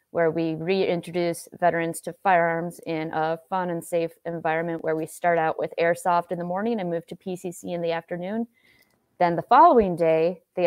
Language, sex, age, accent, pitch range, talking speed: English, female, 20-39, American, 165-185 Hz, 185 wpm